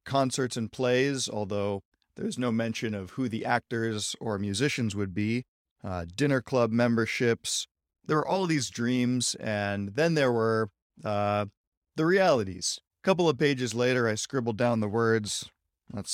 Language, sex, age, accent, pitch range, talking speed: English, male, 40-59, American, 105-125 Hz, 155 wpm